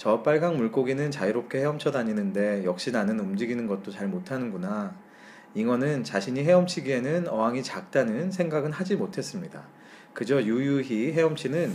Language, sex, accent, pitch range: Korean, male, native, 125-180 Hz